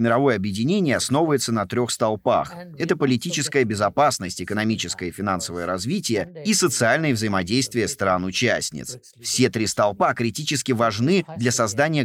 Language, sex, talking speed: Russian, male, 120 wpm